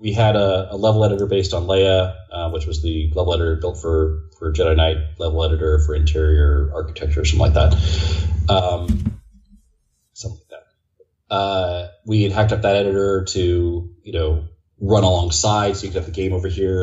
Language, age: English, 30-49